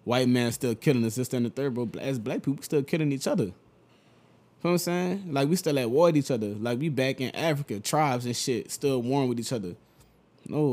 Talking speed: 250 wpm